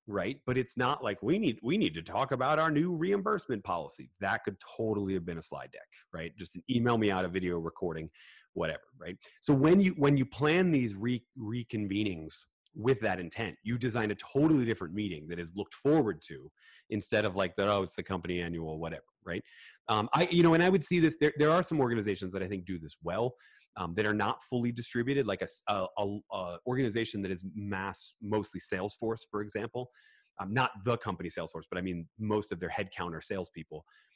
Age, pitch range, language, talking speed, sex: 30-49, 95-125 Hz, English, 210 wpm, male